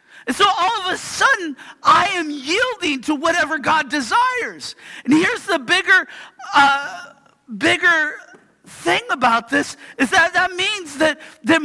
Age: 50-69